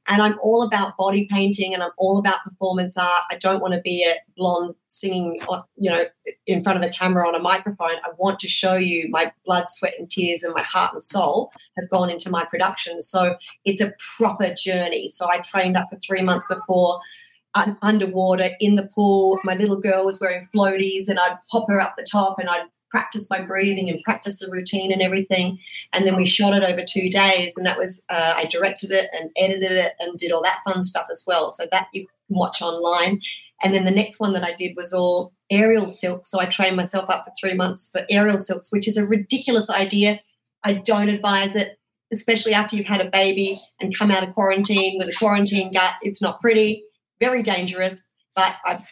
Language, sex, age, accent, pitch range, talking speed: English, female, 40-59, Australian, 180-205 Hz, 215 wpm